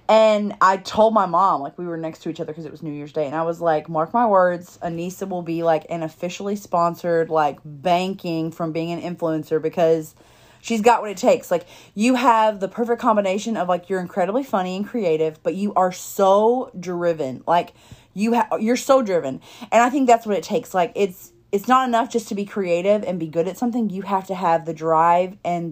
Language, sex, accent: English, female, American